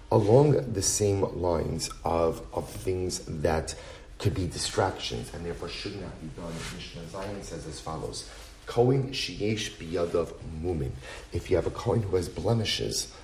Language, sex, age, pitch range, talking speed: English, male, 40-59, 85-115 Hz, 150 wpm